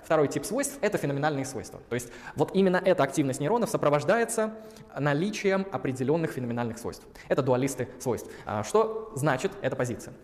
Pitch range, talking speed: 125-165 Hz, 150 wpm